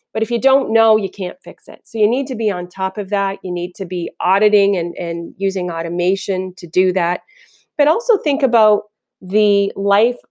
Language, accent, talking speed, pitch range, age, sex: English, American, 210 wpm, 175-220 Hz, 30-49, female